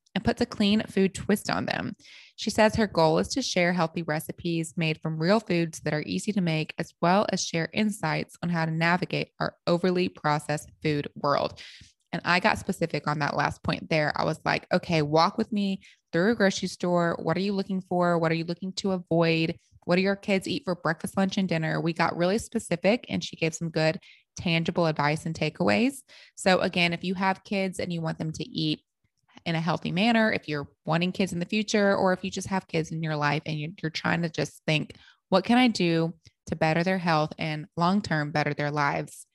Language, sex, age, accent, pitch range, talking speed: English, female, 20-39, American, 160-190 Hz, 225 wpm